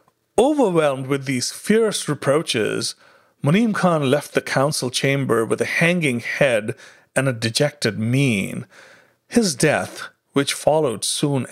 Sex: male